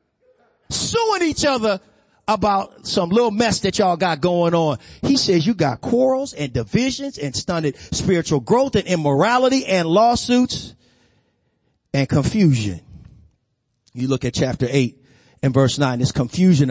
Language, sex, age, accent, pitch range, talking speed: English, male, 40-59, American, 140-205 Hz, 140 wpm